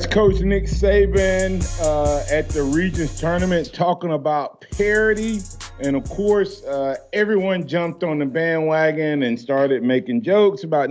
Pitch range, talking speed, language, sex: 115-150 Hz, 140 wpm, English, male